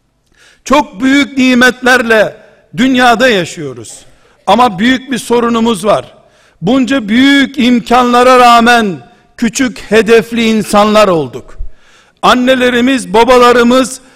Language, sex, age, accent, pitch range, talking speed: Turkish, male, 60-79, native, 225-260 Hz, 85 wpm